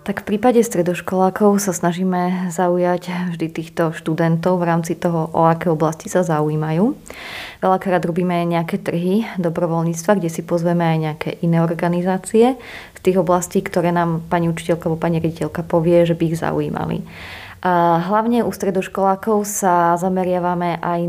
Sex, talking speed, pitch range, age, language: female, 145 wpm, 165-185 Hz, 20-39, Slovak